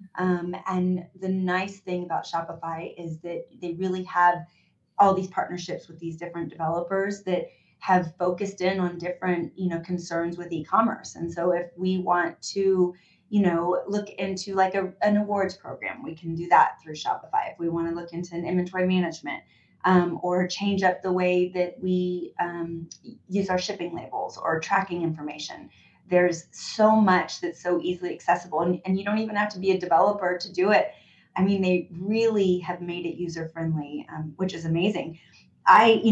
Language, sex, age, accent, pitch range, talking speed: English, female, 30-49, American, 170-195 Hz, 180 wpm